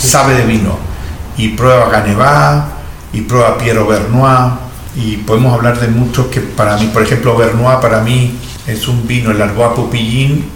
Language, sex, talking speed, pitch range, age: Portuguese, male, 165 wpm, 105-125 Hz, 50-69